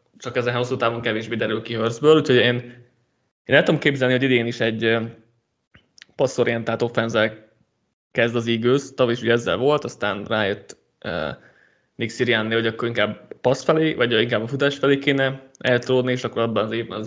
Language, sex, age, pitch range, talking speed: Hungarian, male, 20-39, 115-135 Hz, 175 wpm